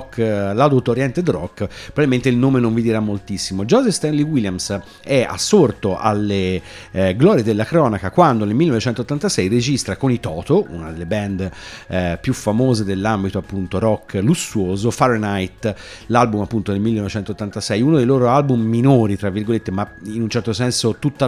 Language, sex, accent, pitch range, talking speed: Italian, male, native, 95-125 Hz, 155 wpm